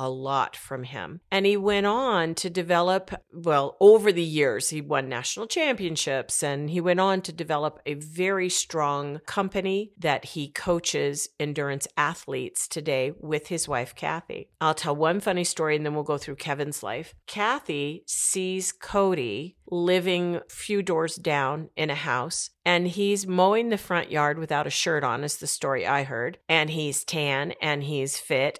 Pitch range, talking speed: 145-180 Hz, 170 wpm